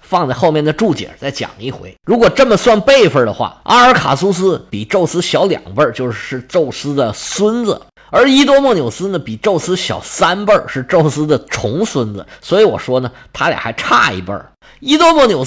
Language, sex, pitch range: Chinese, male, 165-245 Hz